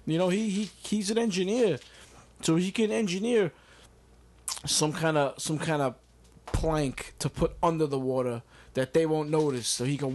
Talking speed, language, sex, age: 175 wpm, English, male, 20-39